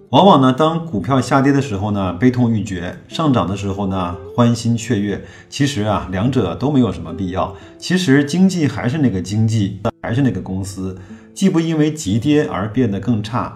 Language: Chinese